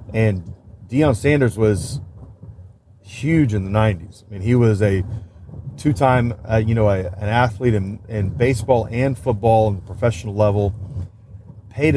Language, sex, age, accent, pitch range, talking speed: English, male, 30-49, American, 100-120 Hz, 135 wpm